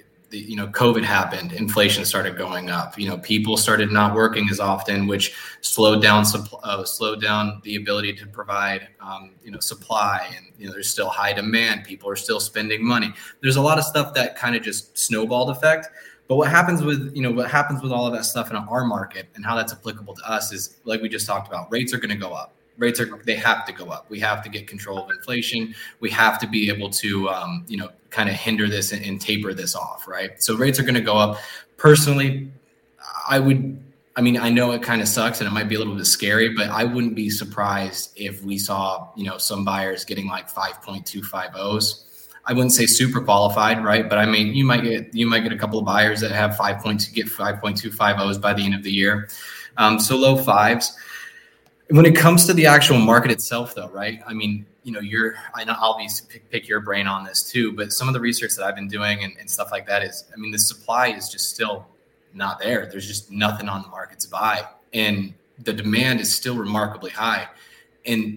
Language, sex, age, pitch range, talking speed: English, male, 20-39, 100-120 Hz, 230 wpm